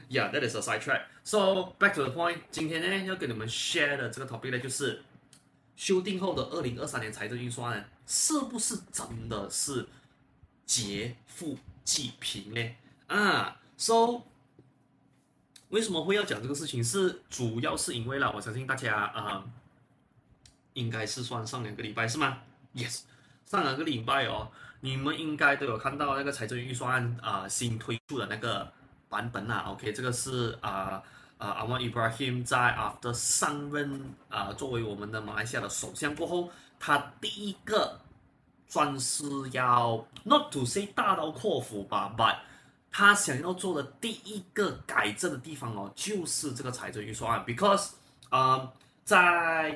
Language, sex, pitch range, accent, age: Chinese, male, 115-155 Hz, native, 20-39